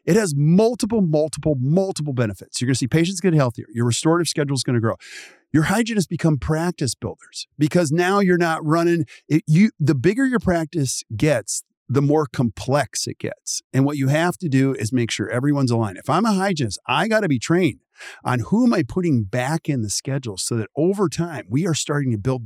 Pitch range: 125-190 Hz